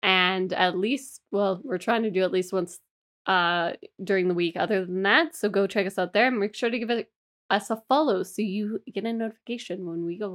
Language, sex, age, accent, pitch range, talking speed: English, female, 10-29, American, 185-230 Hz, 240 wpm